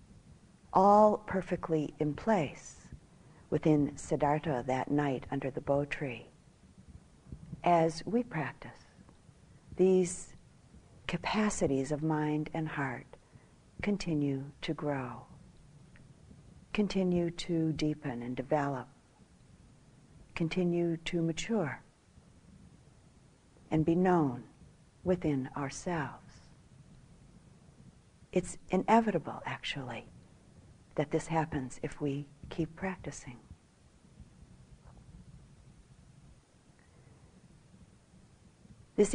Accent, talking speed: American, 75 wpm